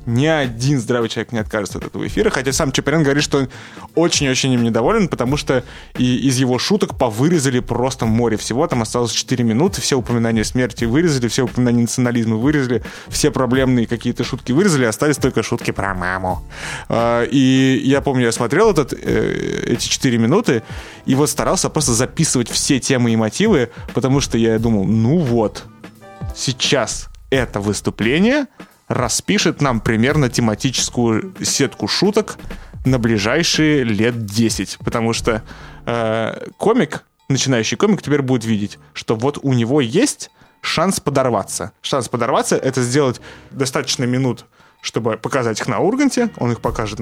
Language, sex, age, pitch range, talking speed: Russian, male, 20-39, 115-140 Hz, 145 wpm